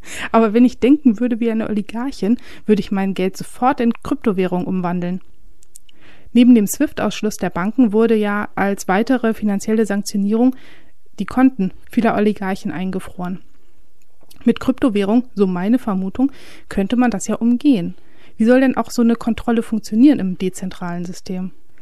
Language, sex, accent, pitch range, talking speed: German, female, German, 205-245 Hz, 150 wpm